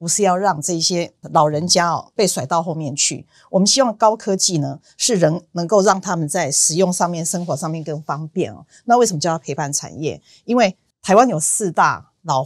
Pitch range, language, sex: 150-190 Hz, Chinese, female